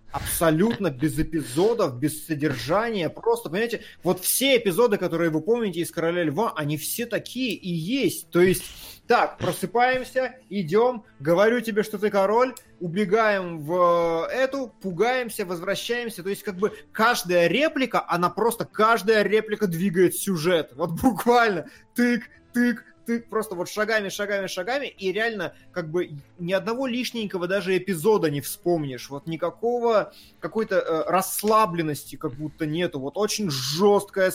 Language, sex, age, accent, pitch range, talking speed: Russian, male, 20-39, native, 160-215 Hz, 140 wpm